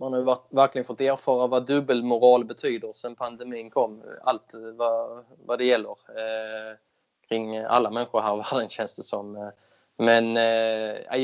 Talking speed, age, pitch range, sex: 150 wpm, 20-39, 115-130 Hz, male